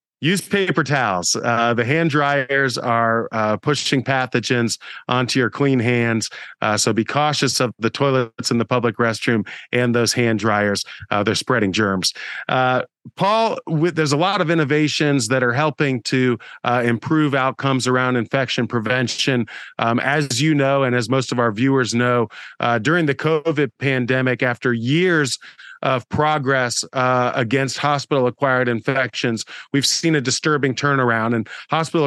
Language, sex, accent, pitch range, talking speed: English, male, American, 125-155 Hz, 155 wpm